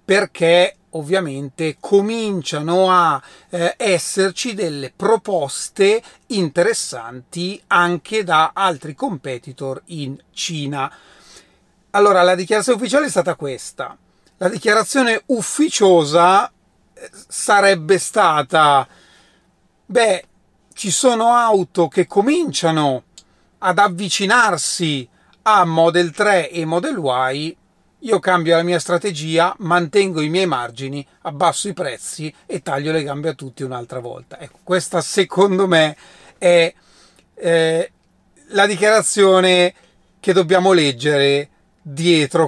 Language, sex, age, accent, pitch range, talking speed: Italian, male, 40-59, native, 145-190 Hz, 105 wpm